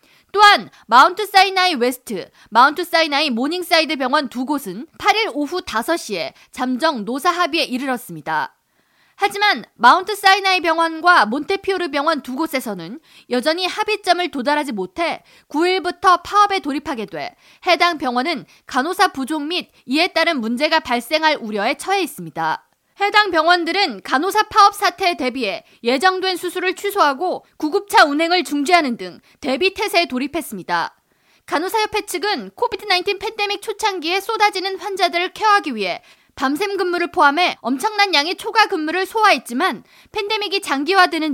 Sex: female